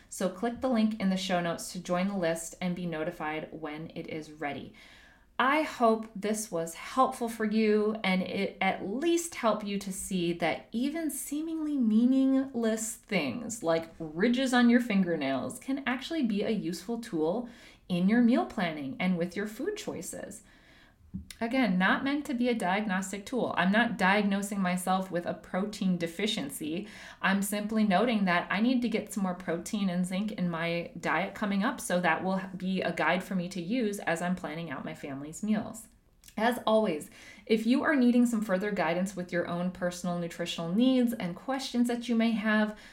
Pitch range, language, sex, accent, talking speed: 175-235 Hz, English, female, American, 185 wpm